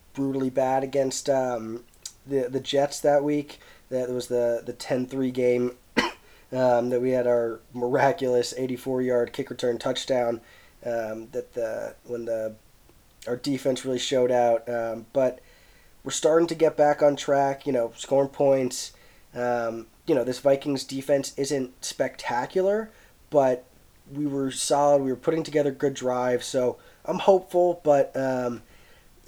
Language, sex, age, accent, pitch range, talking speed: English, male, 20-39, American, 125-145 Hz, 145 wpm